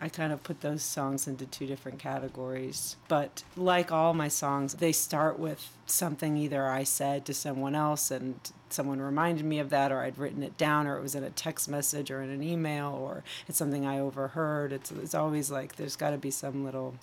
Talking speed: 220 wpm